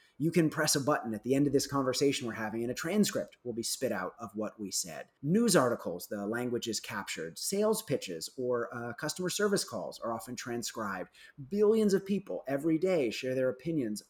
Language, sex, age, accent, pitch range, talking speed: English, male, 30-49, American, 125-180 Hz, 205 wpm